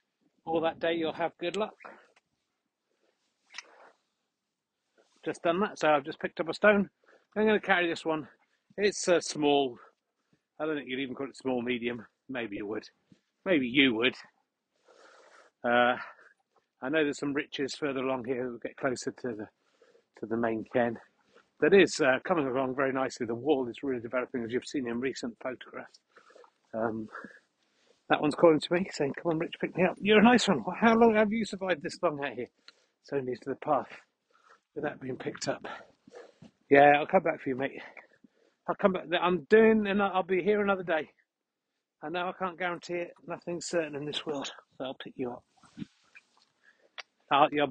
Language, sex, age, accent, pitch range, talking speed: English, male, 40-59, British, 135-180 Hz, 185 wpm